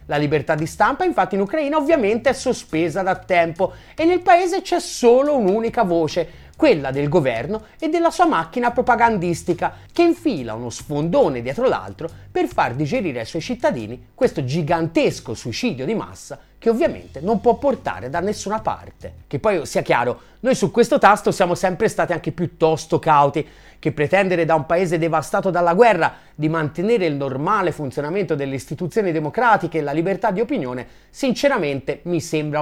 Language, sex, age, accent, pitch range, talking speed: Italian, male, 30-49, native, 150-245 Hz, 165 wpm